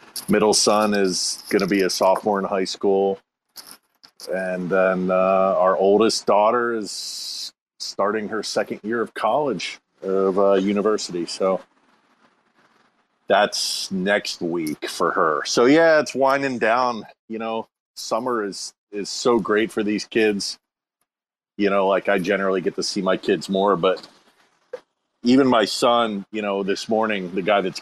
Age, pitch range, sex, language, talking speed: 40-59, 100-135 Hz, male, English, 150 wpm